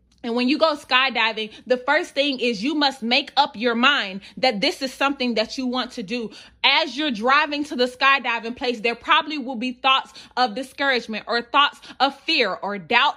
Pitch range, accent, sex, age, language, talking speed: 250-300 Hz, American, female, 20-39, English, 200 wpm